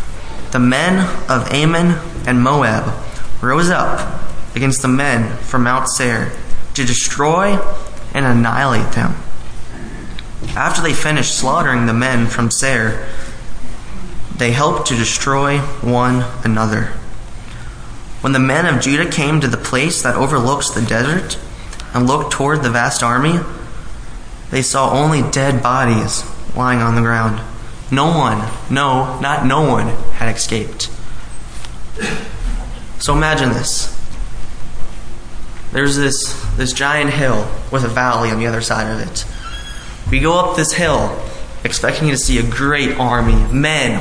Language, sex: English, male